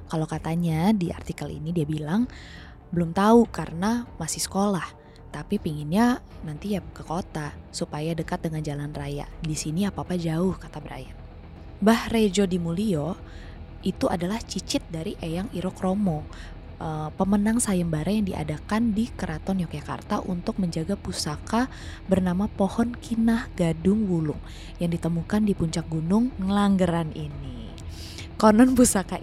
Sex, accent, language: female, native, Indonesian